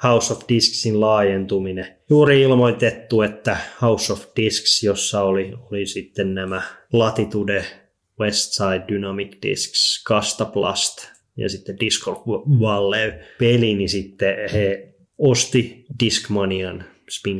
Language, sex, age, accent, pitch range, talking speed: Finnish, male, 20-39, native, 100-115 Hz, 105 wpm